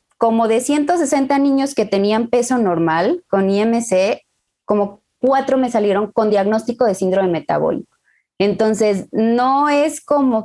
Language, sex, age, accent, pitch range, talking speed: Spanish, female, 20-39, Mexican, 185-230 Hz, 130 wpm